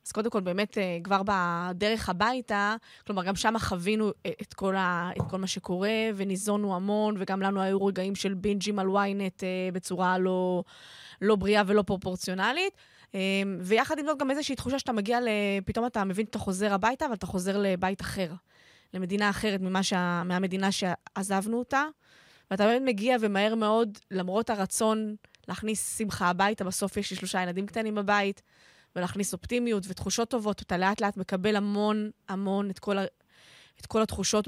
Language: Hebrew